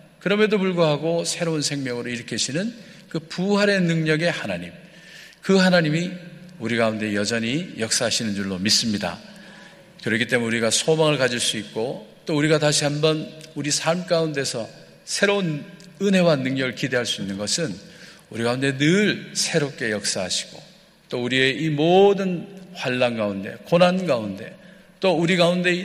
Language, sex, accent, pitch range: Korean, male, native, 120-185 Hz